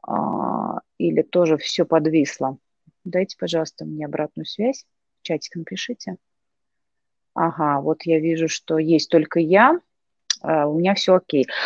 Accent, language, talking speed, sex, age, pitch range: native, Russian, 120 wpm, female, 30-49, 160-195 Hz